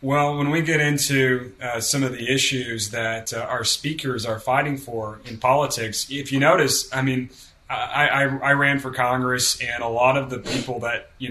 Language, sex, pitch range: English, male, 125-145 Hz